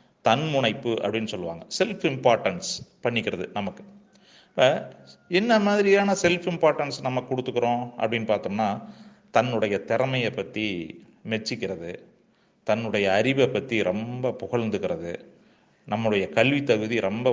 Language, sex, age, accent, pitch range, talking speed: Tamil, male, 30-49, native, 105-135 Hz, 100 wpm